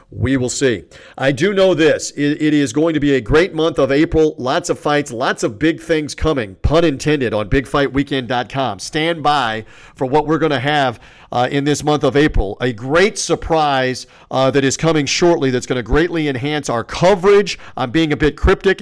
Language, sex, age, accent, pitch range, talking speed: English, male, 40-59, American, 130-160 Hz, 200 wpm